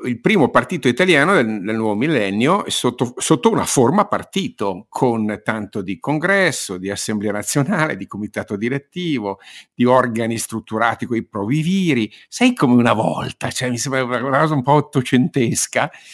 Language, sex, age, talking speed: Italian, male, 50-69, 155 wpm